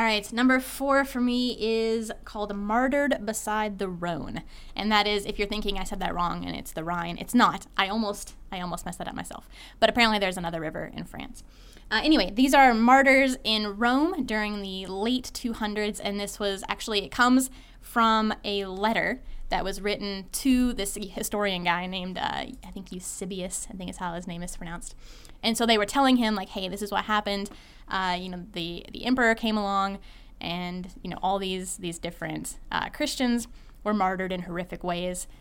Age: 10-29